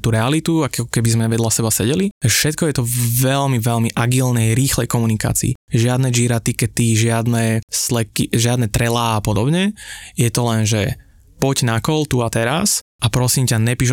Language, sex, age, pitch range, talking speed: Slovak, male, 20-39, 115-125 Hz, 165 wpm